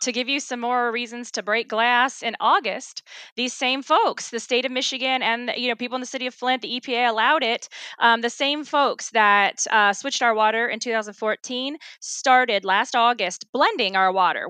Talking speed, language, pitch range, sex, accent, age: 200 wpm, English, 215-265 Hz, female, American, 20-39